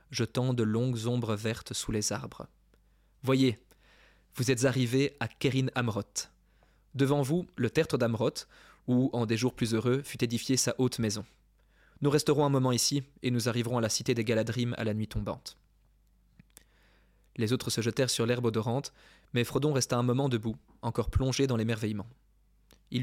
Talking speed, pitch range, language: 170 wpm, 115-135 Hz, French